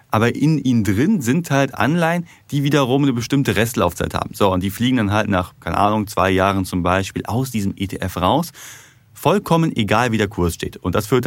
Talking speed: 210 wpm